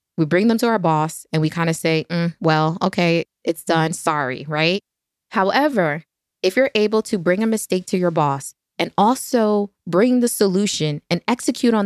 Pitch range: 165-210 Hz